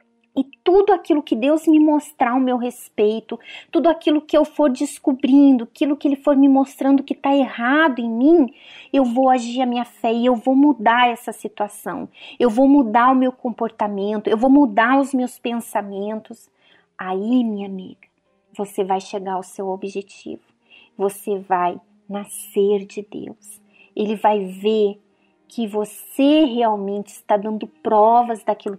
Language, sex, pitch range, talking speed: Portuguese, female, 205-255 Hz, 155 wpm